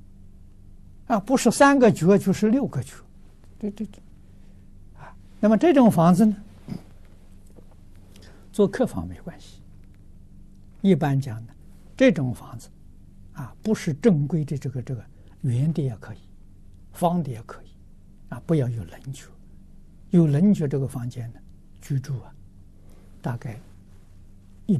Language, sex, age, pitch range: Chinese, male, 60-79, 95-140 Hz